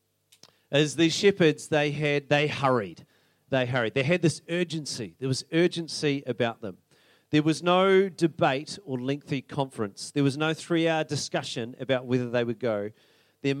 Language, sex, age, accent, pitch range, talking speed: English, male, 40-59, Australian, 120-160 Hz, 155 wpm